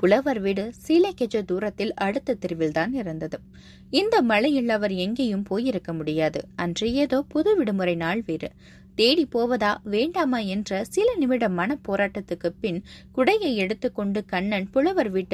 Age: 20-39